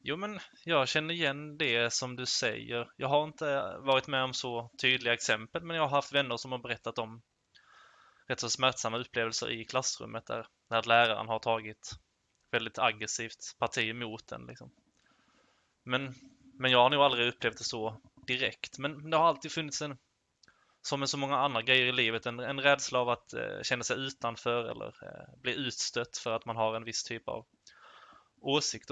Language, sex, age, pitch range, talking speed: Swedish, male, 20-39, 115-135 Hz, 185 wpm